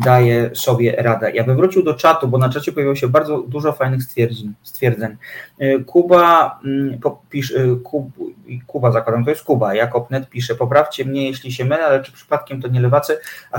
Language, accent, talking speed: Polish, native, 175 wpm